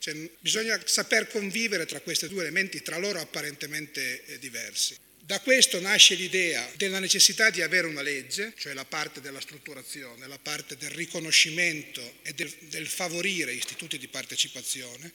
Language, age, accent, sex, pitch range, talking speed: Italian, 30-49, native, male, 155-215 Hz, 145 wpm